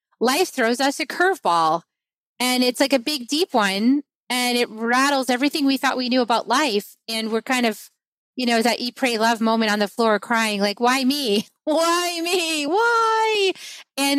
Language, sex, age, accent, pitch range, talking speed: English, female, 30-49, American, 215-270 Hz, 185 wpm